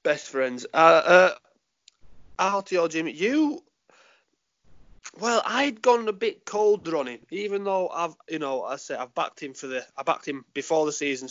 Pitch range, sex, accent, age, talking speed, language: 130-175 Hz, male, British, 20-39, 175 wpm, English